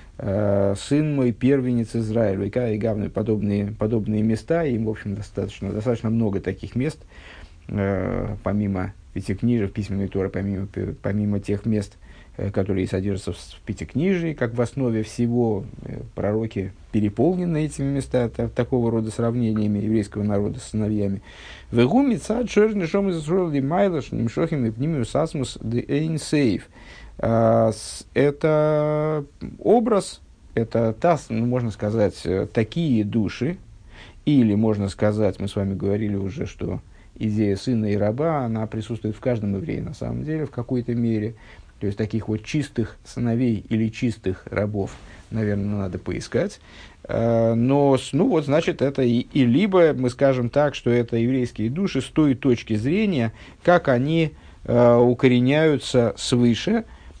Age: 50-69